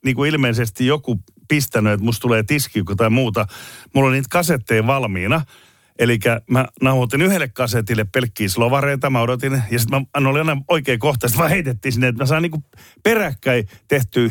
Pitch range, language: 115-150 Hz, Finnish